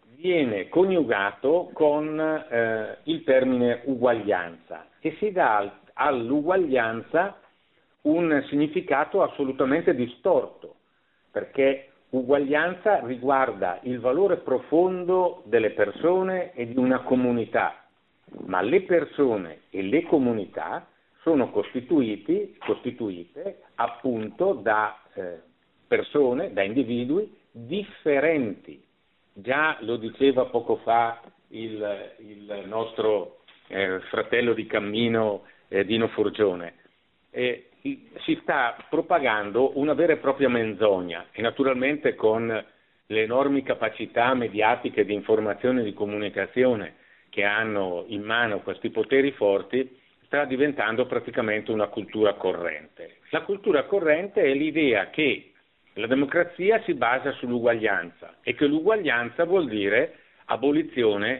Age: 50-69